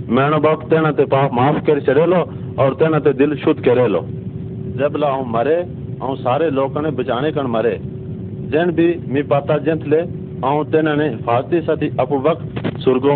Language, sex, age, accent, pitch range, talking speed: Hindi, male, 50-69, native, 125-155 Hz, 90 wpm